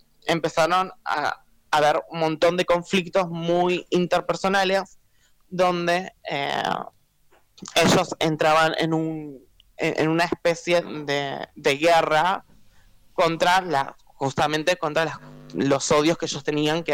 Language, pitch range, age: Spanish, 155-190 Hz, 20-39